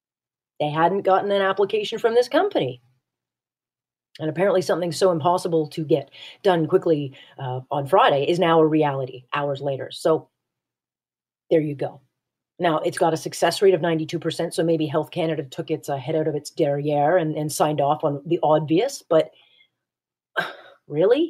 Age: 40-59